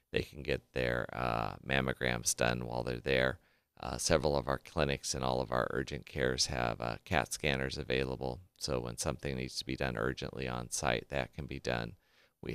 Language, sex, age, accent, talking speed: English, male, 40-59, American, 195 wpm